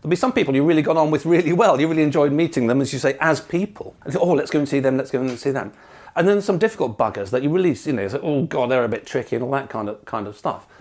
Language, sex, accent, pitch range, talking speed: English, male, British, 120-150 Hz, 330 wpm